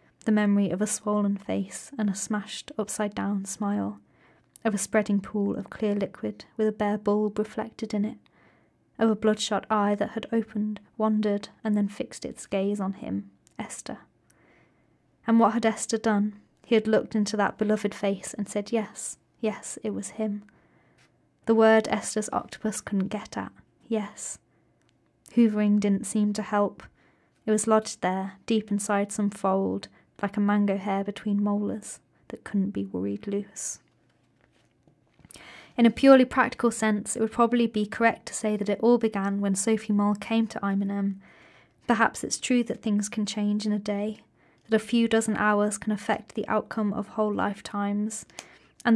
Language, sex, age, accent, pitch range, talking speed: English, female, 20-39, British, 200-220 Hz, 170 wpm